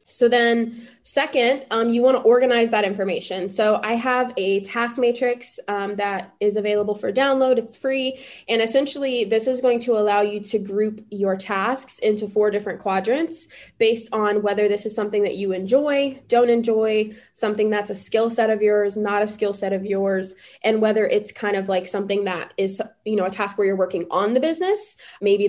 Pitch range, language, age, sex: 200-235 Hz, English, 20-39, female